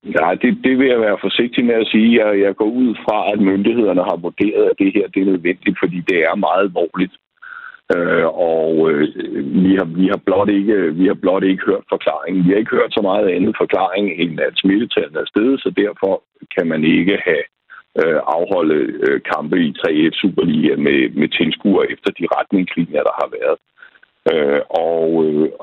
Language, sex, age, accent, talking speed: Danish, male, 60-79, native, 195 wpm